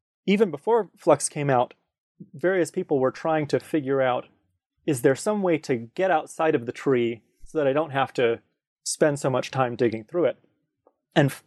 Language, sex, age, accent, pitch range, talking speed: English, male, 30-49, American, 125-165 Hz, 190 wpm